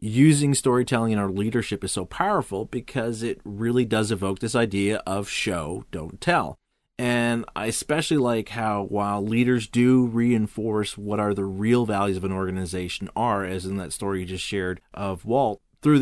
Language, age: English, 30-49